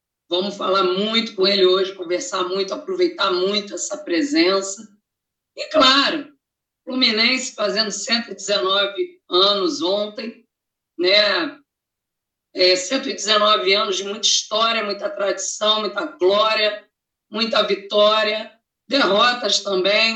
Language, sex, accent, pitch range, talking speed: Portuguese, female, Brazilian, 195-275 Hz, 100 wpm